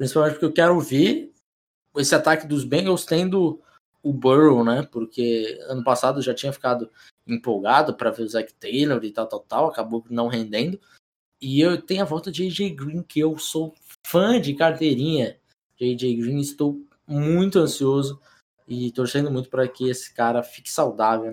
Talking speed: 175 wpm